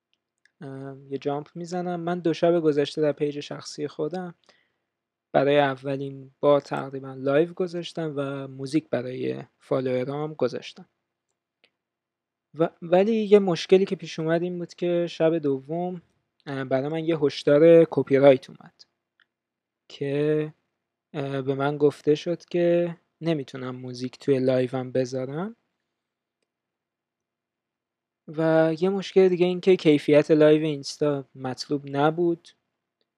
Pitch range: 135-165 Hz